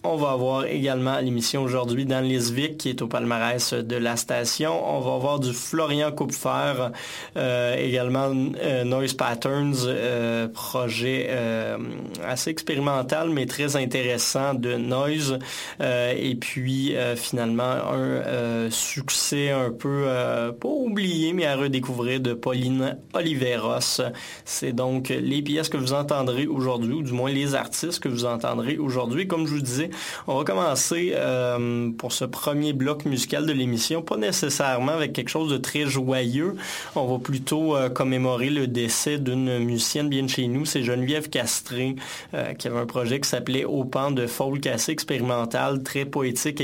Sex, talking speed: male, 165 wpm